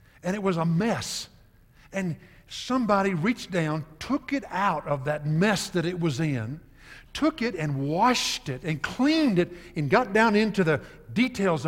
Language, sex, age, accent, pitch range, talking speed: English, male, 60-79, American, 130-195 Hz, 170 wpm